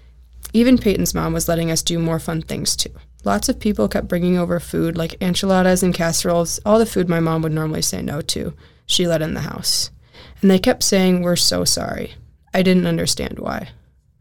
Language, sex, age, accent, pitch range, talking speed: English, female, 20-39, American, 155-195 Hz, 205 wpm